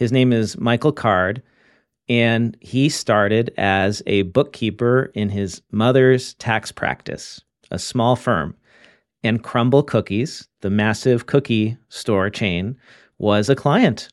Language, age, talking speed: English, 40-59, 125 wpm